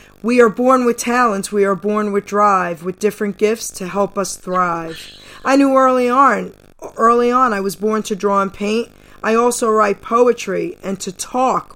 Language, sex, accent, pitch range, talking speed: English, female, American, 190-225 Hz, 190 wpm